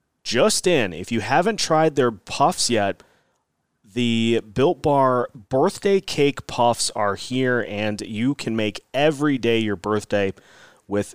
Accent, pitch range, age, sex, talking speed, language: American, 110-145 Hz, 30-49, male, 140 wpm, English